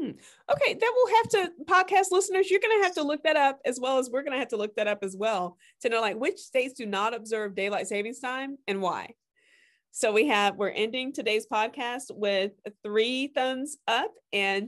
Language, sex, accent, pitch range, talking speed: English, female, American, 215-300 Hz, 210 wpm